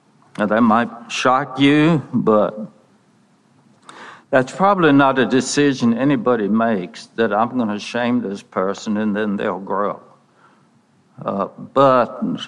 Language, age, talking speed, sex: English, 60-79, 125 wpm, male